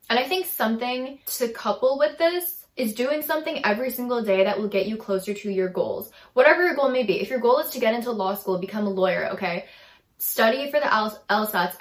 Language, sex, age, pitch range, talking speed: English, female, 10-29, 200-270 Hz, 225 wpm